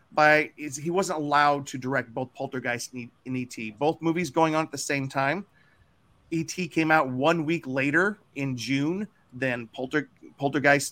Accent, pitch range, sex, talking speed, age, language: American, 140-175 Hz, male, 175 wpm, 40-59, English